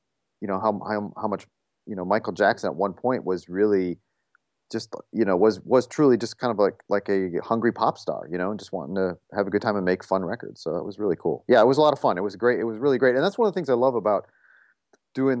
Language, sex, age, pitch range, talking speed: English, male, 40-59, 90-115 Hz, 285 wpm